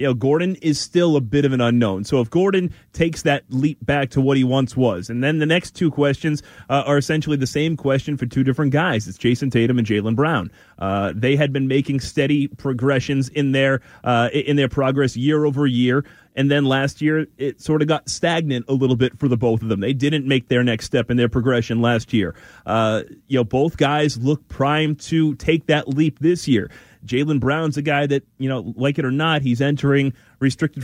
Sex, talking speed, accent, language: male, 225 wpm, American, English